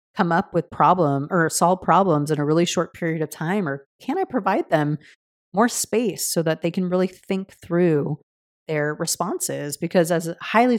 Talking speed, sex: 190 wpm, female